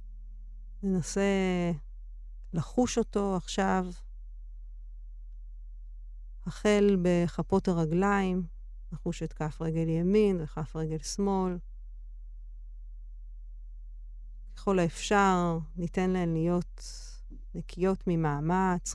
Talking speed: 70 wpm